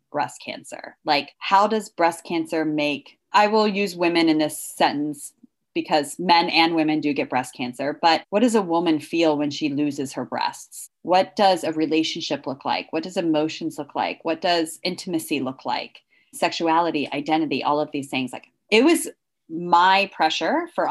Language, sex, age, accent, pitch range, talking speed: English, female, 20-39, American, 155-195 Hz, 180 wpm